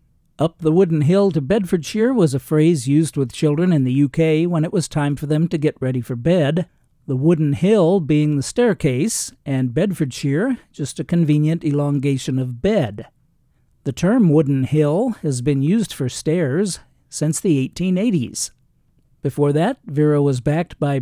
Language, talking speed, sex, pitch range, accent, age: English, 165 wpm, male, 140-170 Hz, American, 50-69